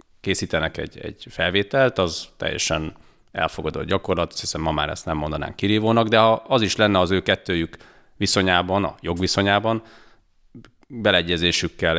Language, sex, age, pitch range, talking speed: Hungarian, male, 30-49, 85-105 Hz, 135 wpm